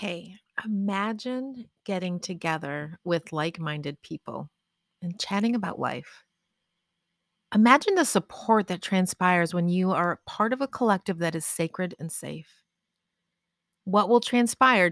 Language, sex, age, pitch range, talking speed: English, female, 30-49, 175-210 Hz, 125 wpm